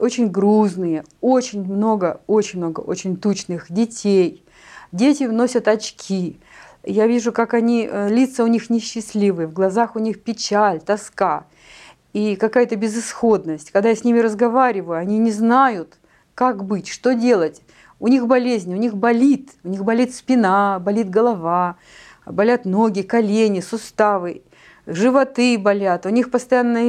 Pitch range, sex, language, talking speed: 195-240 Hz, female, Russian, 140 wpm